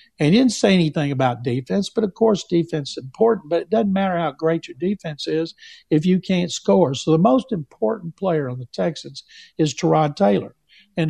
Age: 60-79